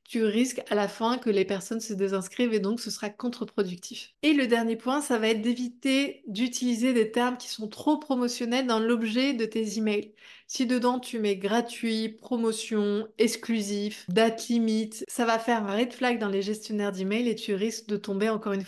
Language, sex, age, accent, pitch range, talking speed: French, female, 20-39, French, 215-245 Hz, 195 wpm